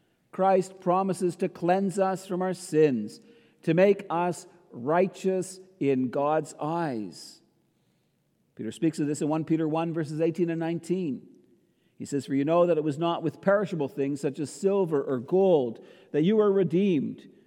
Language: English